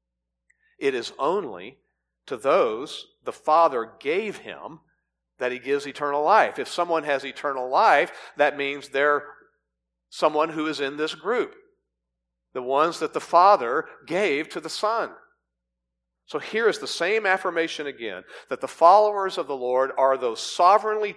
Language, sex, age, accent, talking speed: English, male, 50-69, American, 150 wpm